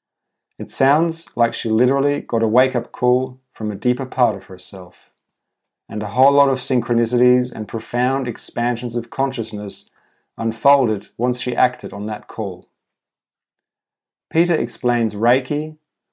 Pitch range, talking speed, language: 115-135 Hz, 135 wpm, English